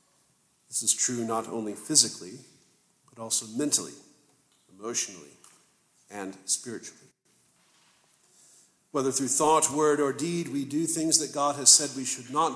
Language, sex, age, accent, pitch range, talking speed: English, male, 50-69, American, 110-130 Hz, 135 wpm